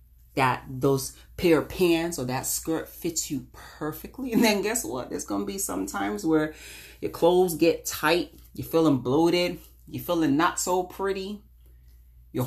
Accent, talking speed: American, 170 wpm